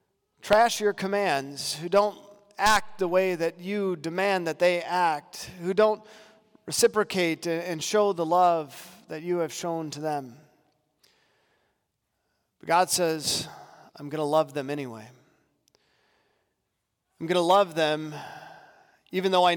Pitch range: 175-215 Hz